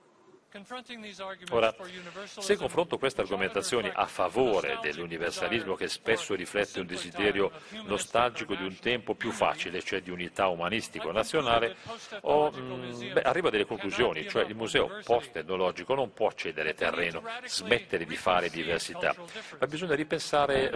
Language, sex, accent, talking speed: Italian, male, native, 130 wpm